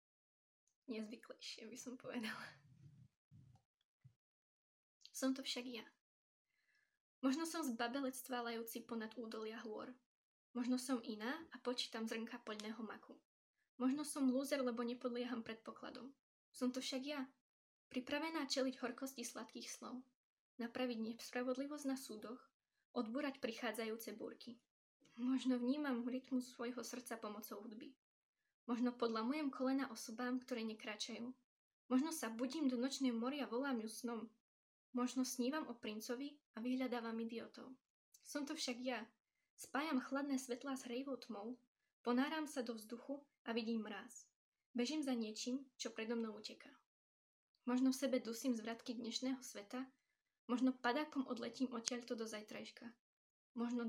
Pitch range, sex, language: 235-265 Hz, female, Slovak